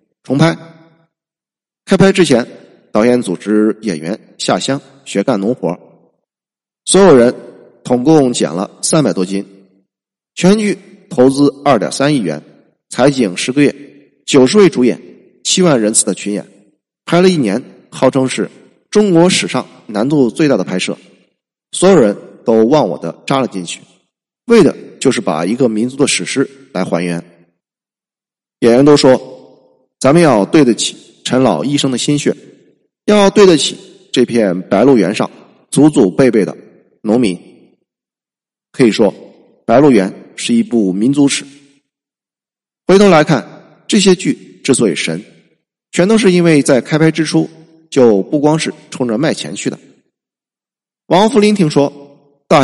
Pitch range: 115-170 Hz